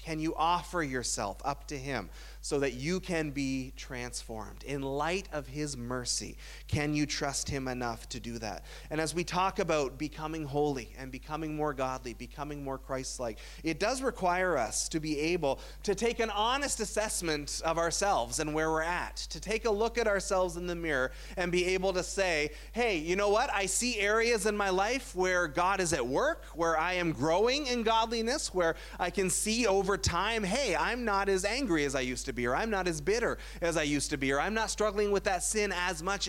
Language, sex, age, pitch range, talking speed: English, male, 30-49, 145-200 Hz, 210 wpm